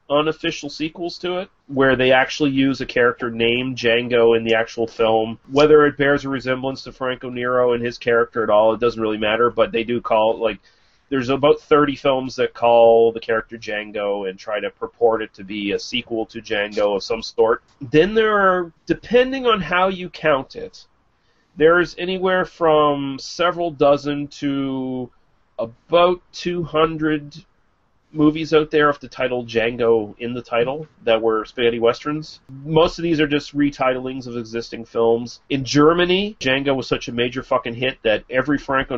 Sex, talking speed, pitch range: male, 175 wpm, 115-155 Hz